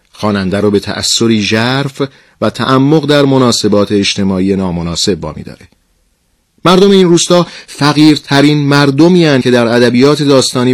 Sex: male